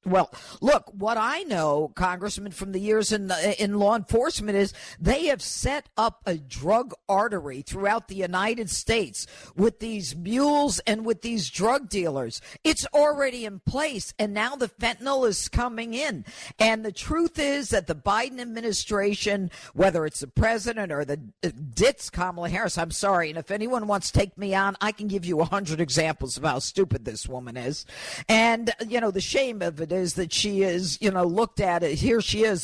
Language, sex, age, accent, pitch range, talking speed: English, female, 50-69, American, 175-225 Hz, 190 wpm